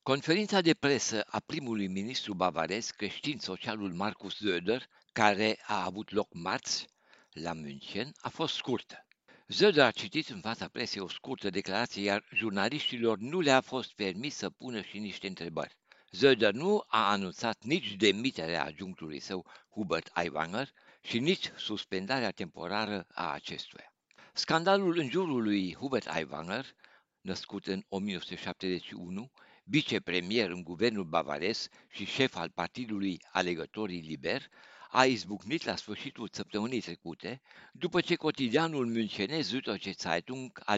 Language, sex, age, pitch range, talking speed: Romanian, male, 60-79, 95-130 Hz, 130 wpm